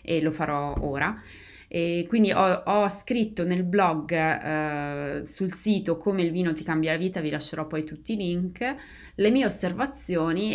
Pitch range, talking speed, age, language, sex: 165-200 Hz, 170 wpm, 20-39, Italian, female